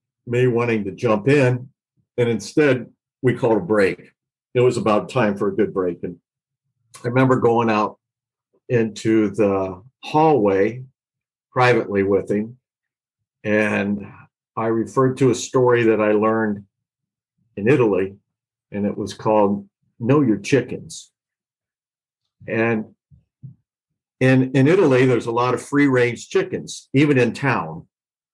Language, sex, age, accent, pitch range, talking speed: English, male, 50-69, American, 105-130 Hz, 130 wpm